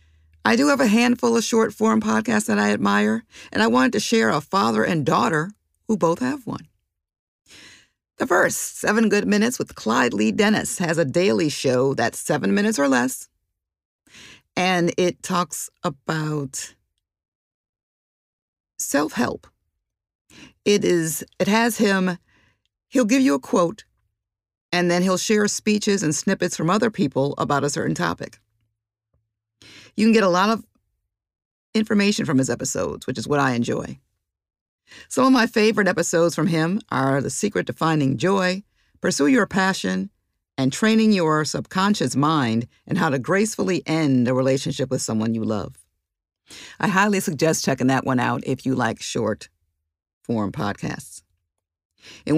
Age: 50-69